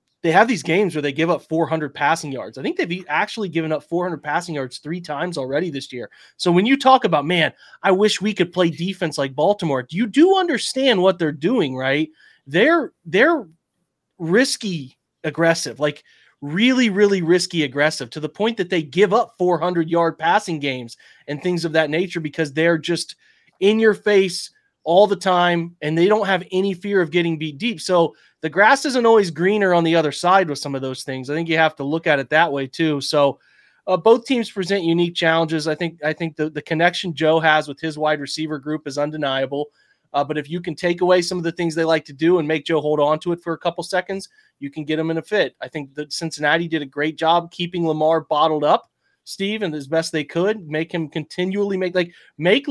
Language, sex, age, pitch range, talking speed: English, male, 30-49, 155-190 Hz, 225 wpm